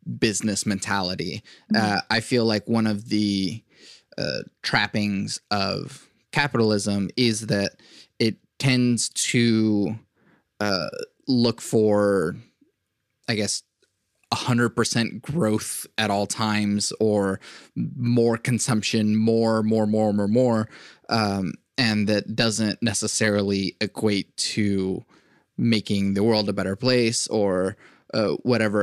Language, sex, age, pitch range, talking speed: English, male, 20-39, 100-115 Hz, 110 wpm